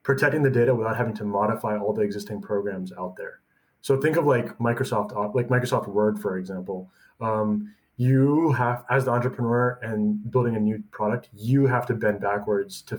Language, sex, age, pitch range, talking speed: English, male, 20-39, 105-125 Hz, 185 wpm